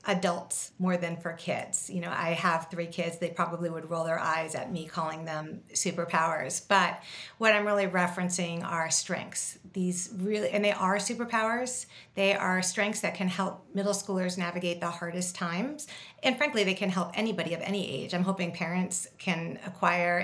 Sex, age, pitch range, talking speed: female, 40-59, 175-200 Hz, 180 wpm